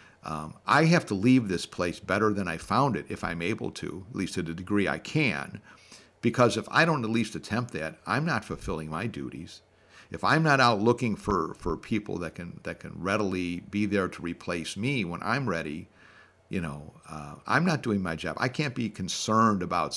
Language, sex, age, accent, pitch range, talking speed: English, male, 50-69, American, 90-115 Hz, 210 wpm